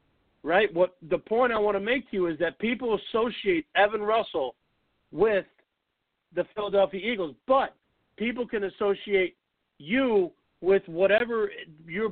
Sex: male